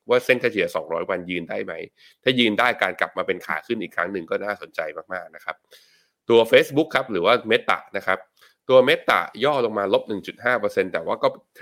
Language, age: Thai, 20-39